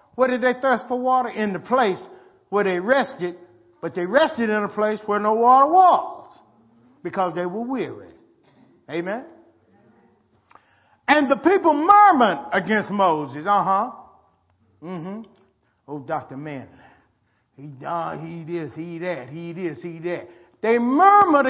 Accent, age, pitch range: American, 50-69, 170-280 Hz